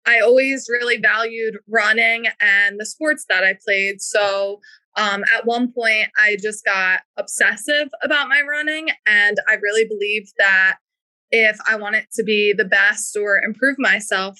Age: 20-39